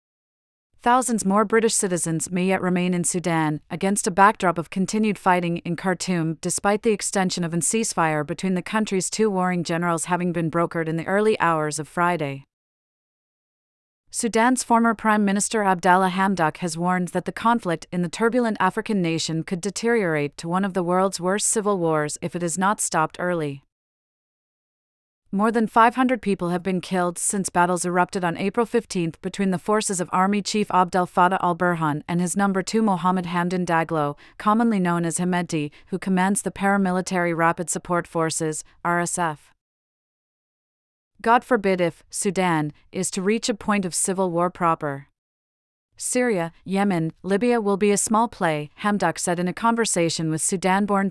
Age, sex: 30-49, female